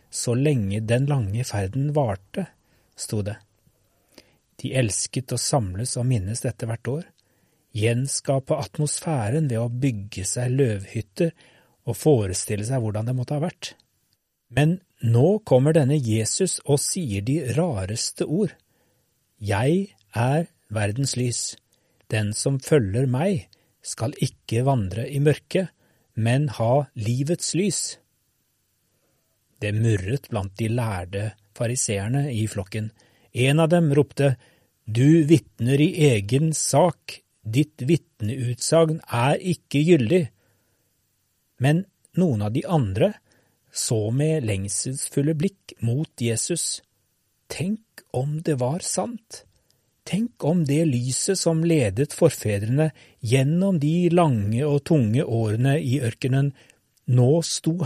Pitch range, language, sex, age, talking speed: 115-155 Hz, English, male, 40-59, 120 wpm